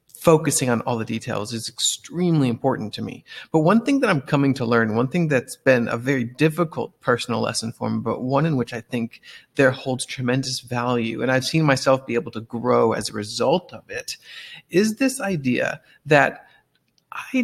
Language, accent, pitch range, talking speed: English, American, 120-160 Hz, 195 wpm